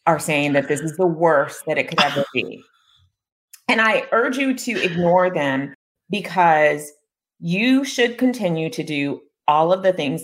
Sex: female